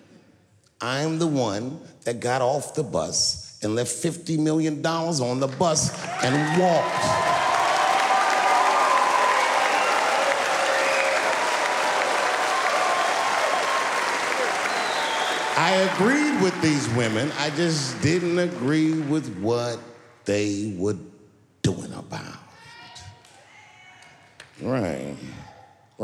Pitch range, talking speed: 115-185 Hz, 75 wpm